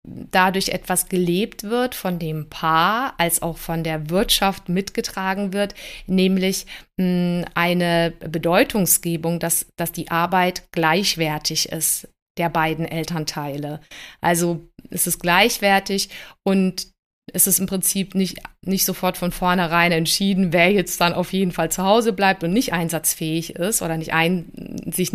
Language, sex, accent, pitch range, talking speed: German, female, German, 170-195 Hz, 135 wpm